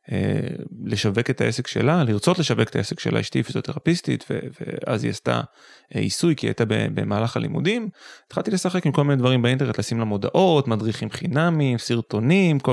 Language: Hebrew